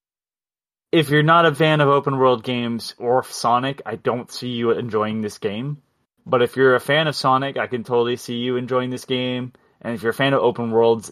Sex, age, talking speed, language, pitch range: male, 30-49, 210 wpm, English, 110-135 Hz